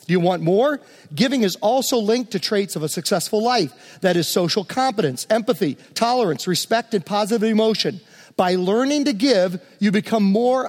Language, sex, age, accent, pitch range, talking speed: English, male, 40-59, American, 185-235 Hz, 170 wpm